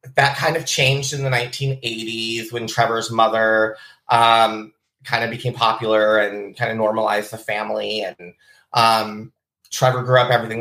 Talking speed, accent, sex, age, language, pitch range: 155 wpm, American, male, 30-49, English, 115-130 Hz